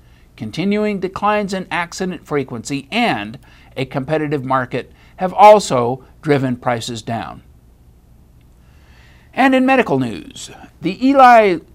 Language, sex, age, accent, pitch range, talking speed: English, male, 60-79, American, 130-200 Hz, 100 wpm